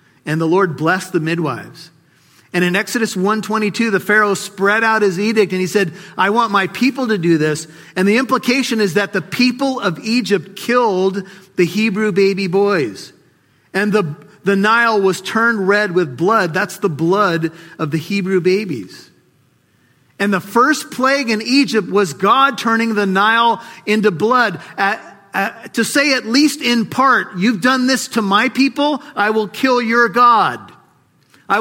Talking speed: 175 wpm